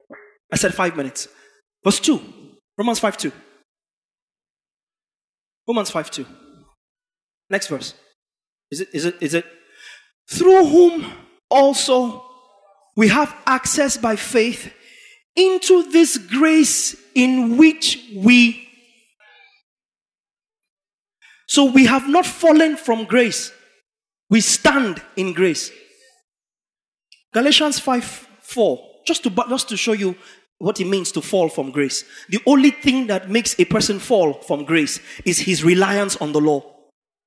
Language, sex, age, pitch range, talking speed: English, male, 30-49, 185-275 Hz, 120 wpm